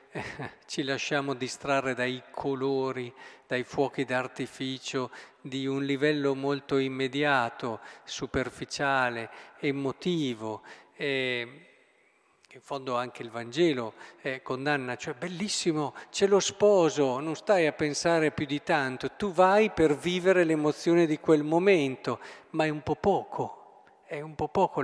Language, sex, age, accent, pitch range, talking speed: Italian, male, 50-69, native, 135-195 Hz, 125 wpm